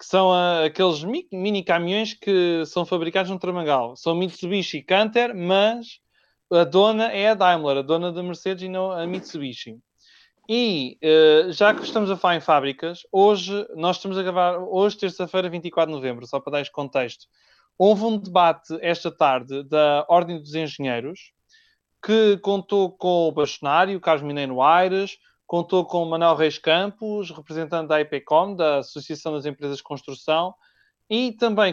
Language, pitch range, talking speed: Portuguese, 155-200 Hz, 165 wpm